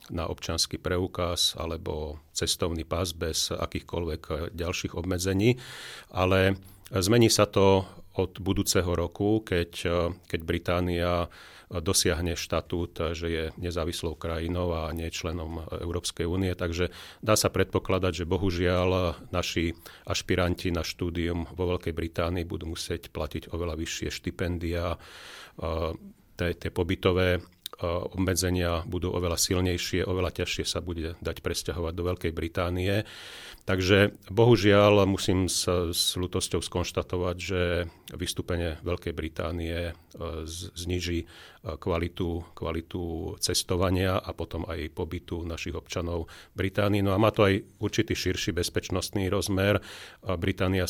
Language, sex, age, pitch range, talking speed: Slovak, male, 40-59, 85-95 Hz, 115 wpm